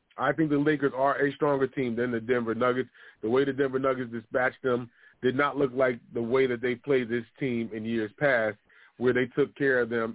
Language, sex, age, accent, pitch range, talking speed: English, male, 30-49, American, 120-145 Hz, 230 wpm